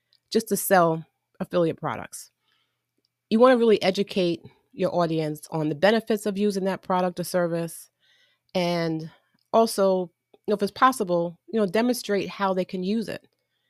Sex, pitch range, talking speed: female, 160-205 Hz, 150 wpm